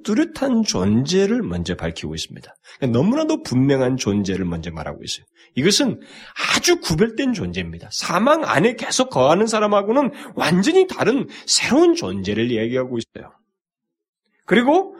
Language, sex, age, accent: Korean, male, 40-59, native